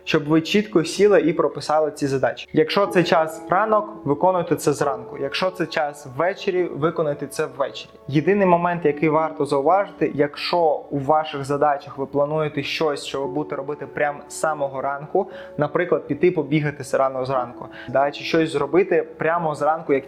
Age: 20-39